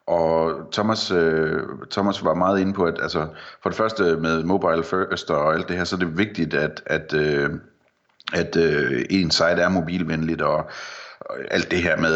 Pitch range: 80-95 Hz